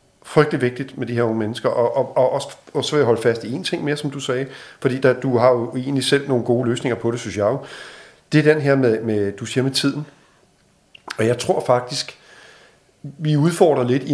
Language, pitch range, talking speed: Danish, 115-145 Hz, 240 wpm